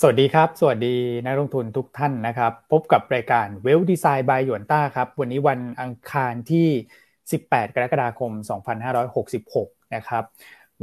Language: Thai